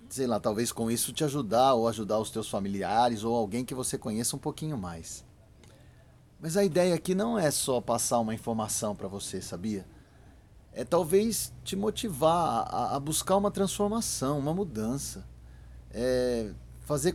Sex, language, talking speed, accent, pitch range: male, Portuguese, 160 wpm, Brazilian, 105-145 Hz